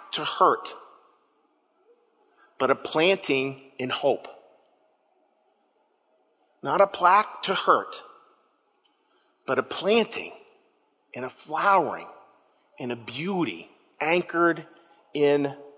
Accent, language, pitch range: American, English, 145-195 Hz